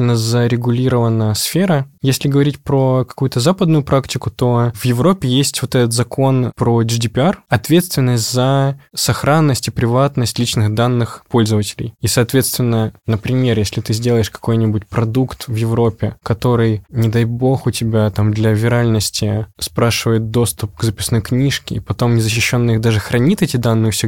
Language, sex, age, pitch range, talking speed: Russian, male, 20-39, 115-135 Hz, 140 wpm